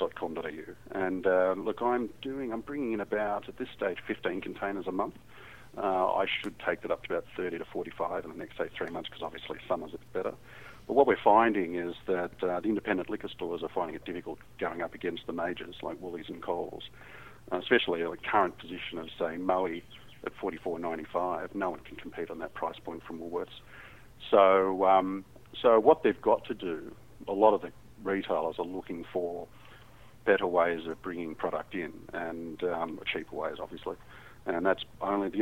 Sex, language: male, English